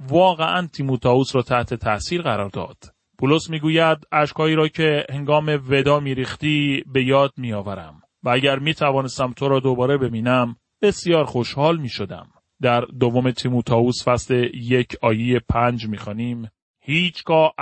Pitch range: 120-145 Hz